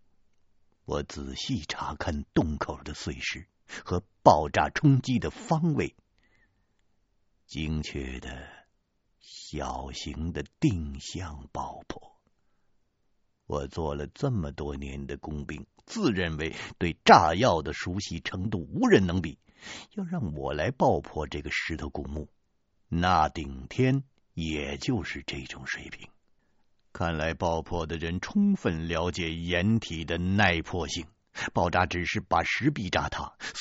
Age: 60-79